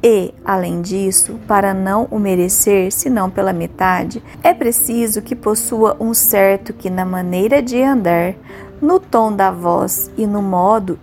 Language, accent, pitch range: Portuguese, Brazilian, 195-250 Hz